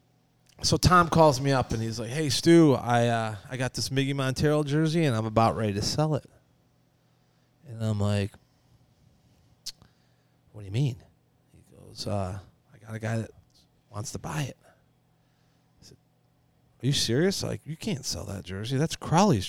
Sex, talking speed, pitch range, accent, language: male, 175 wpm, 115-145 Hz, American, English